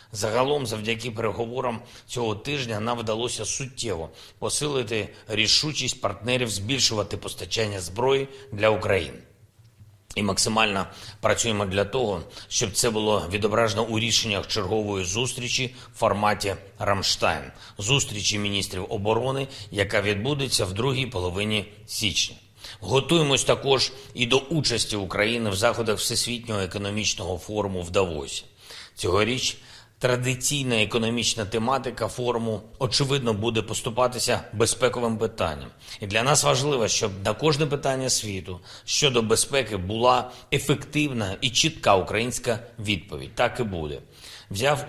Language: Ukrainian